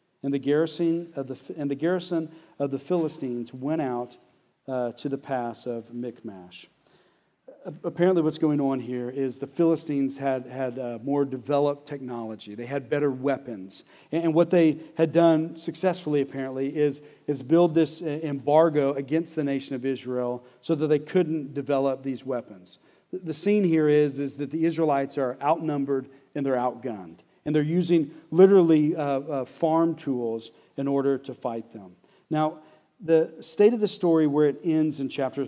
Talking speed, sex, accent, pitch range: 165 wpm, male, American, 130-170 Hz